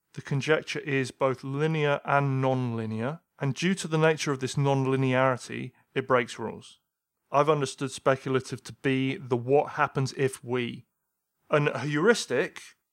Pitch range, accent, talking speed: 130-155 Hz, British, 140 wpm